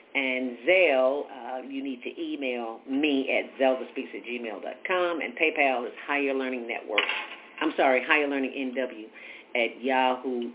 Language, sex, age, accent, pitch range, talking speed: English, female, 50-69, American, 130-170 Hz, 155 wpm